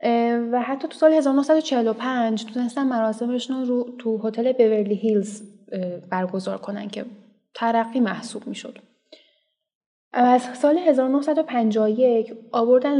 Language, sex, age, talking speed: Persian, female, 10-29, 100 wpm